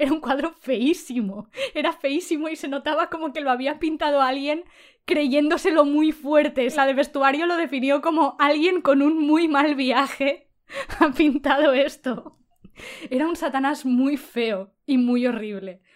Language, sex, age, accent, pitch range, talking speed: Spanish, female, 20-39, Spanish, 235-295 Hz, 160 wpm